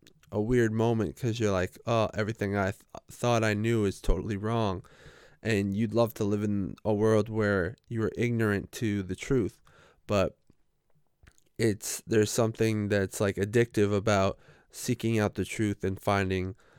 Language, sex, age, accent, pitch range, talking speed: English, male, 20-39, American, 95-115 Hz, 160 wpm